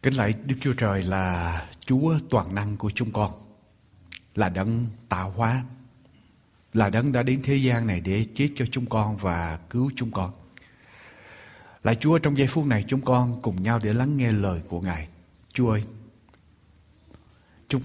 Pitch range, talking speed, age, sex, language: 100-125 Hz, 170 wpm, 60-79, male, Vietnamese